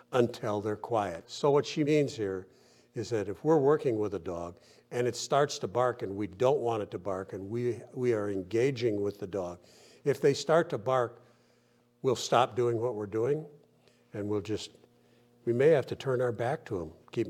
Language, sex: English, male